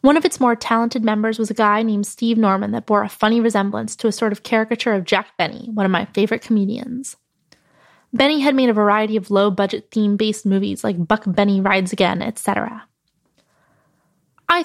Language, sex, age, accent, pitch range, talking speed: English, female, 20-39, American, 205-240 Hz, 190 wpm